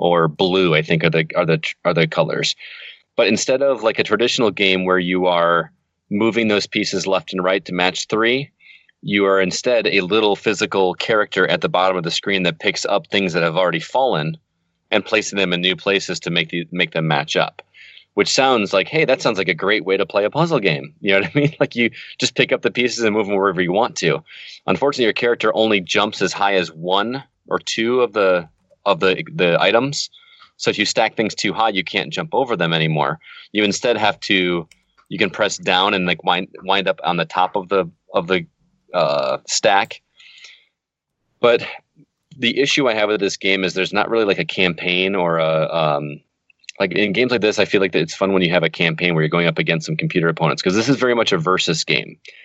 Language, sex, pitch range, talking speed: English, male, 85-110 Hz, 230 wpm